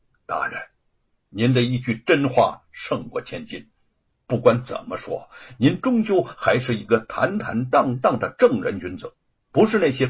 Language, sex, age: Chinese, male, 60-79